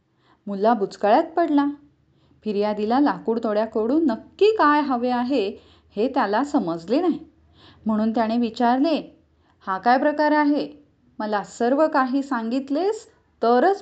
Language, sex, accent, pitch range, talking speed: English, female, Indian, 225-280 Hz, 100 wpm